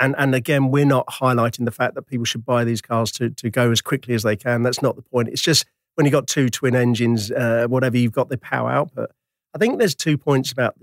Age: 40-59